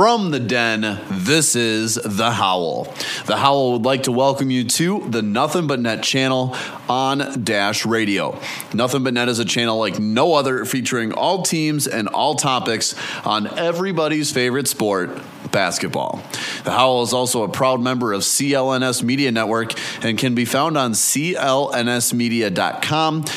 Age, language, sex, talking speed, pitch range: 30-49, English, male, 155 wpm, 115-150 Hz